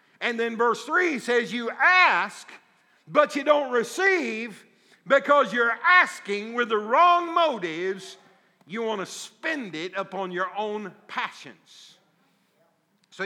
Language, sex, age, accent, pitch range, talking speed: English, male, 50-69, American, 185-230 Hz, 125 wpm